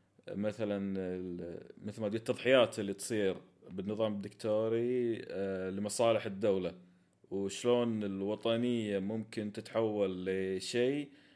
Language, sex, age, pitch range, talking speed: Arabic, male, 30-49, 95-125 Hz, 85 wpm